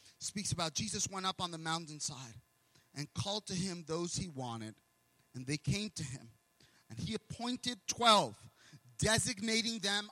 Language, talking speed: English, 155 wpm